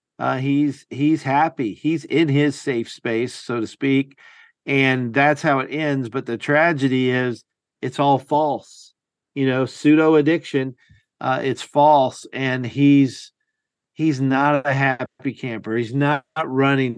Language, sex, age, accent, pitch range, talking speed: English, male, 50-69, American, 115-140 Hz, 145 wpm